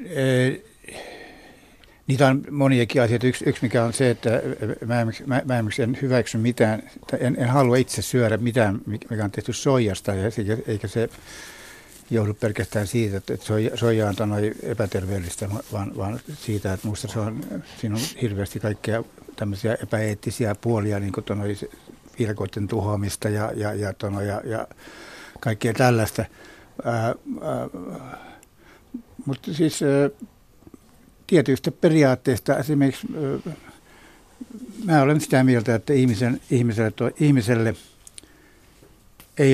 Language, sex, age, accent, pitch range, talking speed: Finnish, male, 60-79, native, 105-130 Hz, 115 wpm